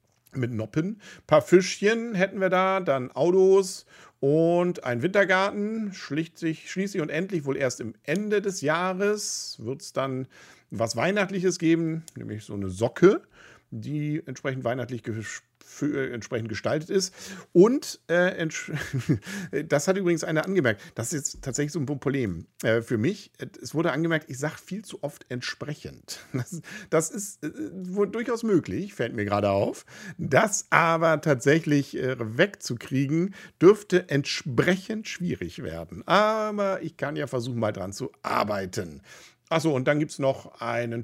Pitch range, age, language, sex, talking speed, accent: 120-180 Hz, 50-69, German, male, 150 wpm, German